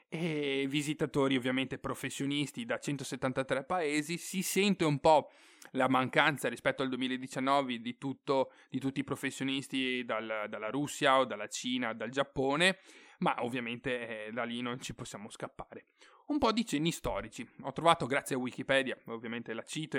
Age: 30-49